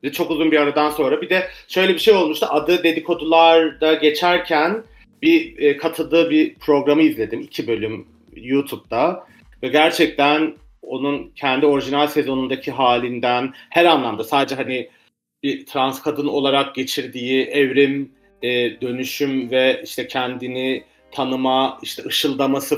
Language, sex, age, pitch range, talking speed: Turkish, male, 40-59, 130-160 Hz, 120 wpm